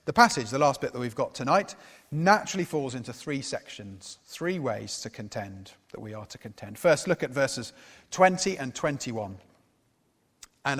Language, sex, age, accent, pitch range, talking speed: English, male, 30-49, British, 115-175 Hz, 170 wpm